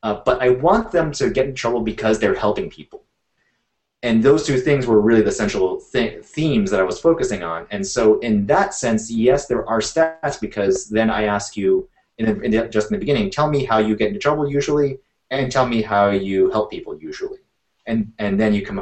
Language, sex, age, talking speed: English, male, 30-49, 225 wpm